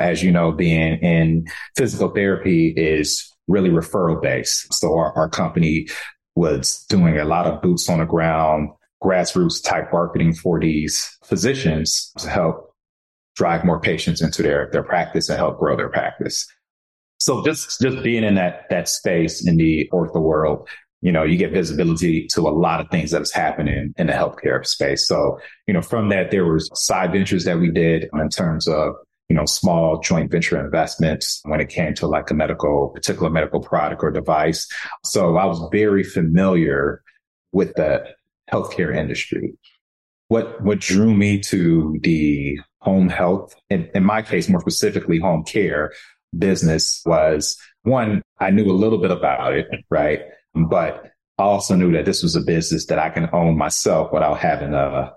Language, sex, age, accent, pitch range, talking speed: English, male, 30-49, American, 80-95 Hz, 175 wpm